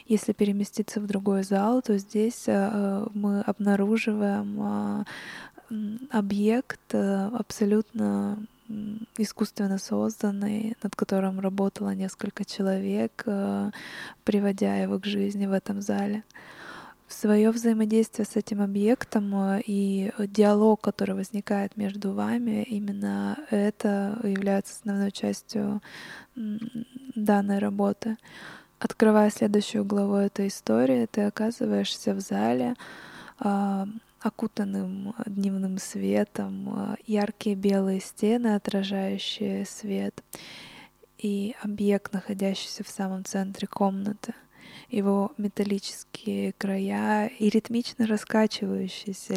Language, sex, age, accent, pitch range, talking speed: Russian, female, 20-39, native, 195-215 Hz, 90 wpm